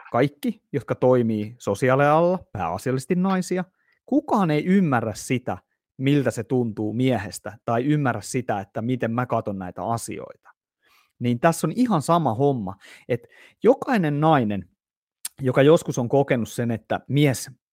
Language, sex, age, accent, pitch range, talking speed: Finnish, male, 30-49, native, 115-150 Hz, 130 wpm